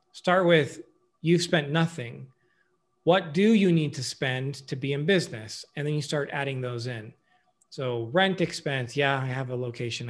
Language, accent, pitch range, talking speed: English, American, 125-170 Hz, 180 wpm